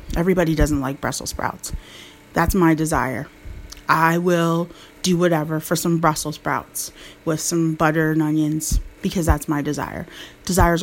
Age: 30-49